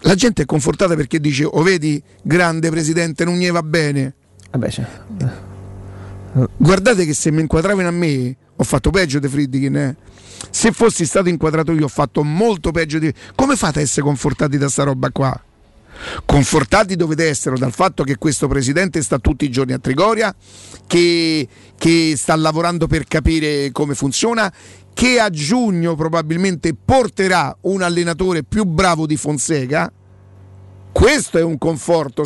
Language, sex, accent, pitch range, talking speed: Italian, male, native, 150-185 Hz, 155 wpm